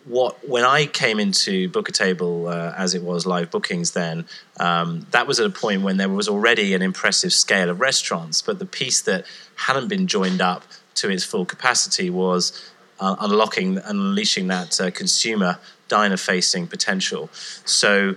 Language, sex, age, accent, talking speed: English, male, 30-49, British, 175 wpm